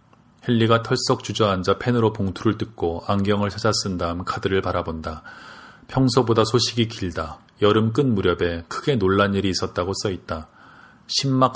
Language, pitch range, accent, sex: Korean, 90-110 Hz, native, male